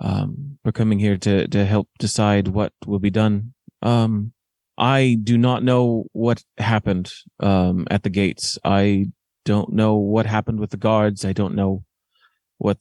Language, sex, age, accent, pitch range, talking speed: English, male, 30-49, American, 105-125 Hz, 165 wpm